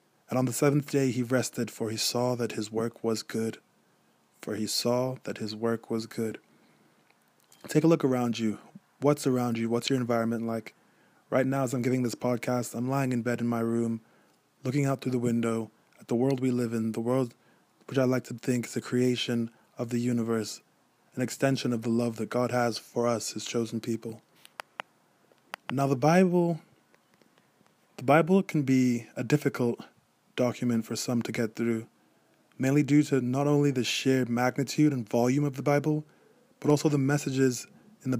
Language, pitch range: English, 115-135 Hz